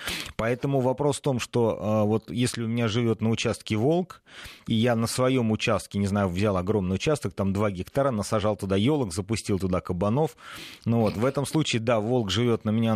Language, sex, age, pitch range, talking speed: Russian, male, 30-49, 100-125 Hz, 195 wpm